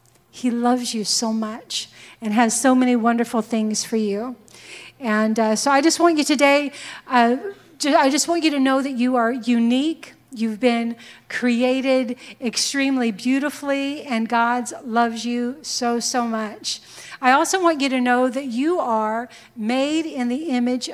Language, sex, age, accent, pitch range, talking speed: English, female, 40-59, American, 230-275 Hz, 165 wpm